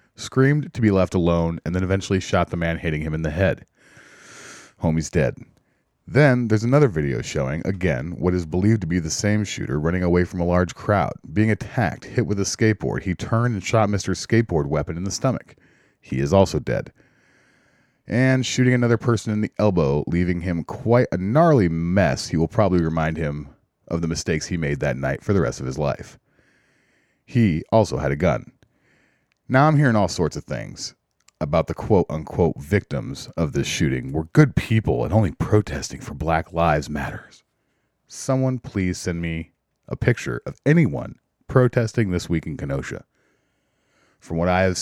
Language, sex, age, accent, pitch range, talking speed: English, male, 30-49, American, 85-115 Hz, 180 wpm